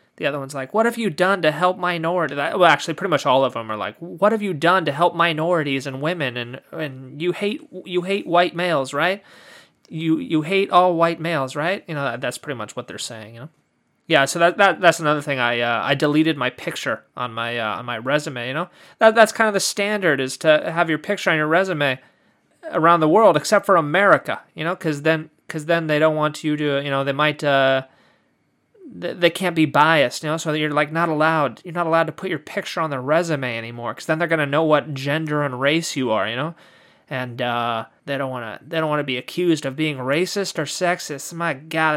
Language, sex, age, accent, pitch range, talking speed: English, male, 30-49, American, 145-190 Hz, 240 wpm